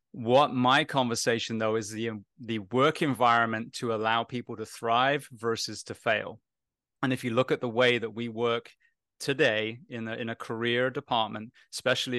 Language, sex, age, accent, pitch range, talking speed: English, male, 30-49, British, 115-130 Hz, 170 wpm